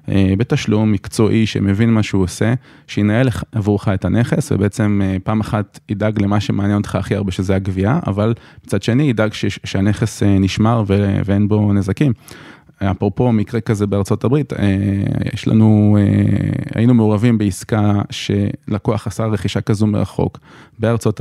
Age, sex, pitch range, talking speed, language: 20-39, male, 100-120 Hz, 135 wpm, Hebrew